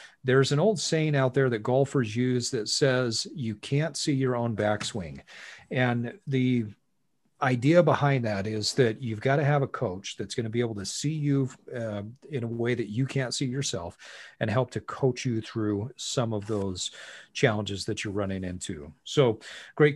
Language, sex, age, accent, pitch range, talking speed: English, male, 40-59, American, 115-140 Hz, 185 wpm